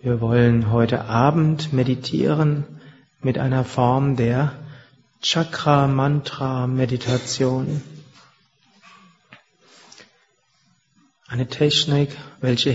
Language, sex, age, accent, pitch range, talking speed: German, male, 40-59, German, 135-160 Hz, 60 wpm